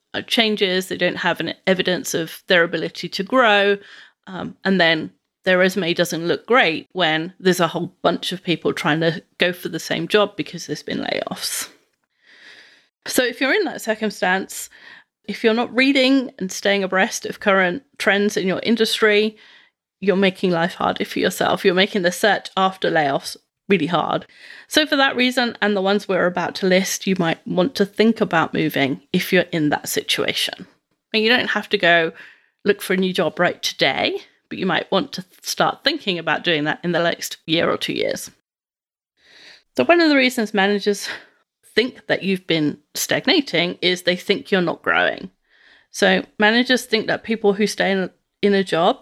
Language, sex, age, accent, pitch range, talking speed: English, female, 30-49, British, 175-220 Hz, 185 wpm